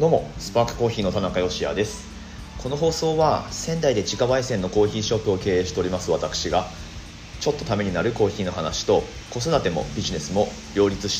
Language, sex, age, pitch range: Japanese, male, 30-49, 85-105 Hz